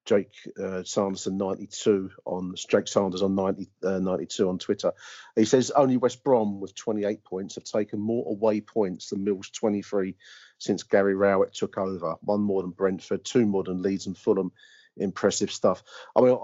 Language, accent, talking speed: English, British, 175 wpm